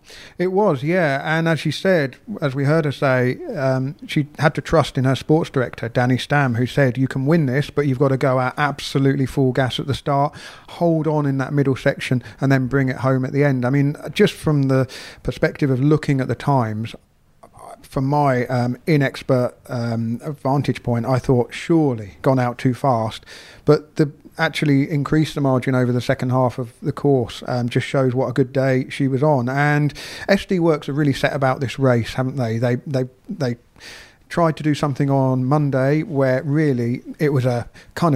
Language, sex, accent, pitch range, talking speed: English, male, British, 130-150 Hz, 205 wpm